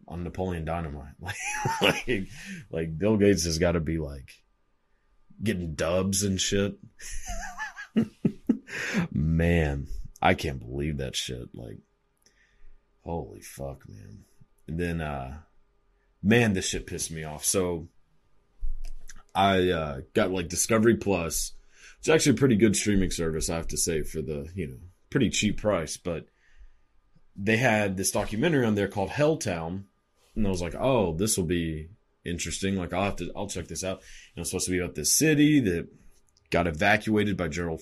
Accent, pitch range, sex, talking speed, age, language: American, 80-100 Hz, male, 160 wpm, 30-49, English